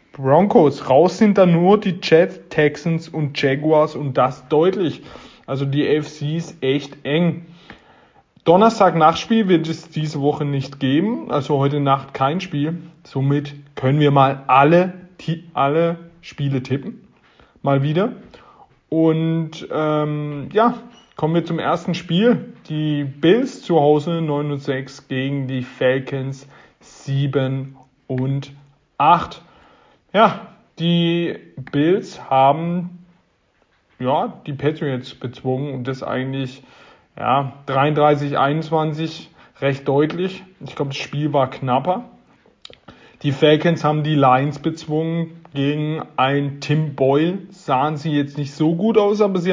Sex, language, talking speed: male, German, 125 wpm